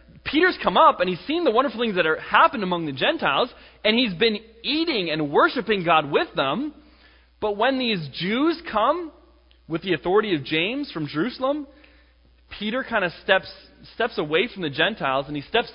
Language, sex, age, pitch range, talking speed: English, male, 20-39, 150-225 Hz, 185 wpm